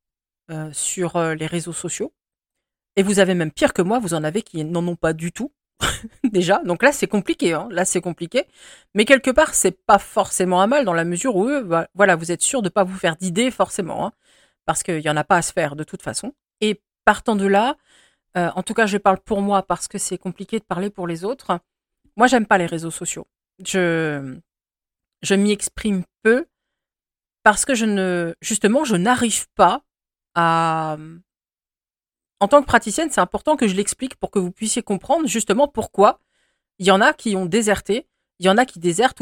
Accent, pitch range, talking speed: French, 180-240 Hz, 210 wpm